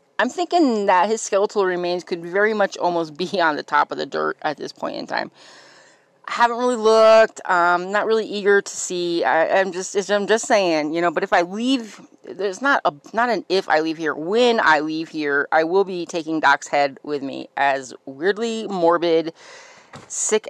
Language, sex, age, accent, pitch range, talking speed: English, female, 30-49, American, 160-225 Hz, 200 wpm